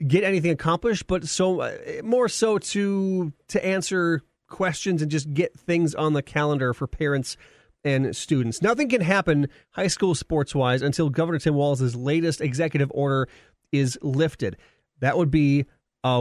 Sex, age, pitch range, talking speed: male, 30-49, 135-170 Hz, 155 wpm